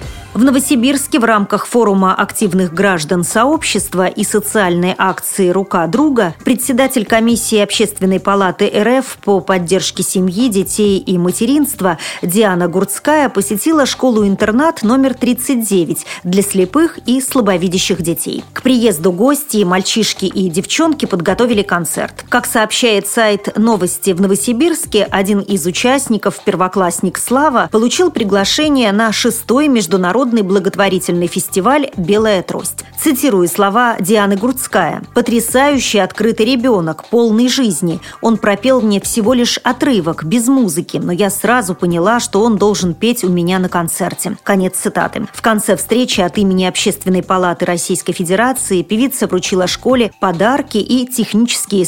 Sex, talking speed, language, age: female, 125 wpm, Russian, 40-59